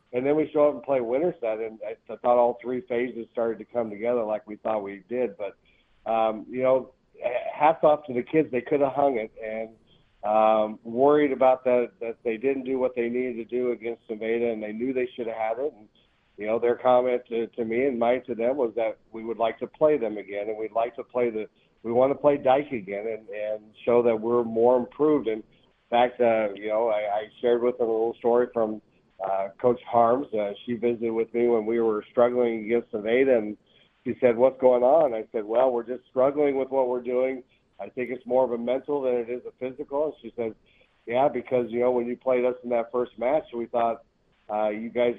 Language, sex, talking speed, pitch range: English, male, 235 wpm, 115-130 Hz